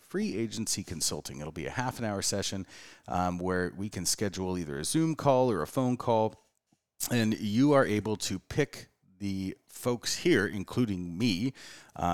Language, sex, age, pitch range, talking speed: English, male, 30-49, 85-115 Hz, 175 wpm